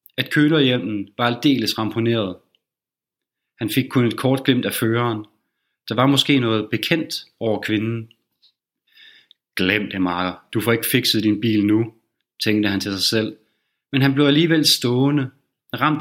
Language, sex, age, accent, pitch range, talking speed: Danish, male, 30-49, native, 110-135 Hz, 155 wpm